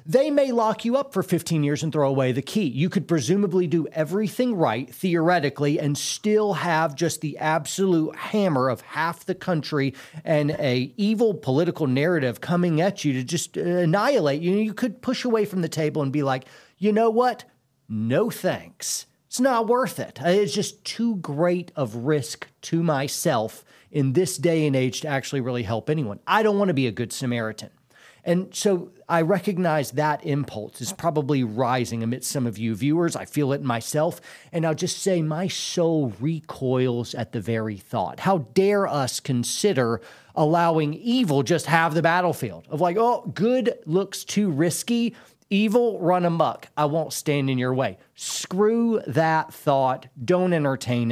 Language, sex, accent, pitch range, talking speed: English, male, American, 135-185 Hz, 175 wpm